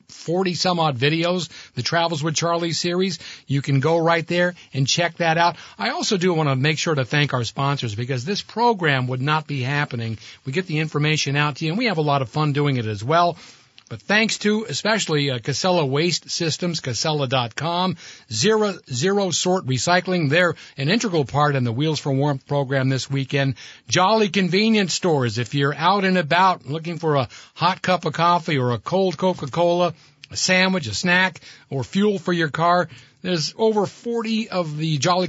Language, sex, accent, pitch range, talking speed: English, male, American, 140-185 Hz, 190 wpm